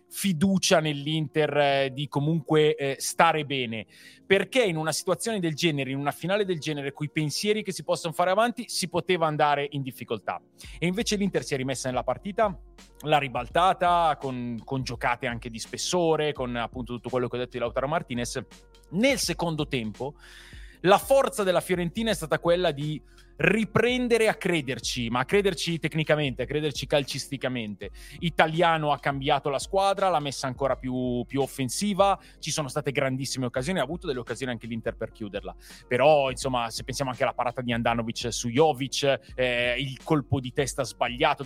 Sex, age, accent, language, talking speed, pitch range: male, 30-49, native, Italian, 175 wpm, 125-170 Hz